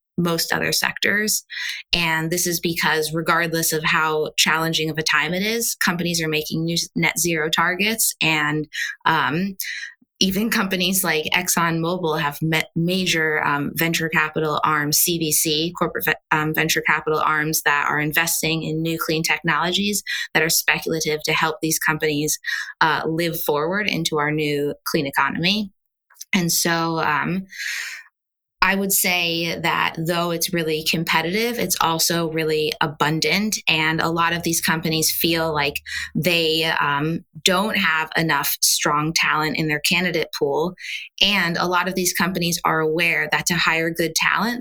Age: 20-39